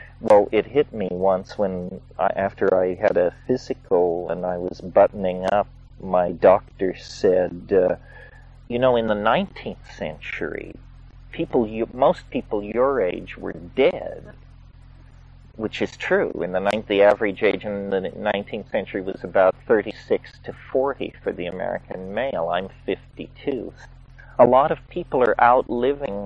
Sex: male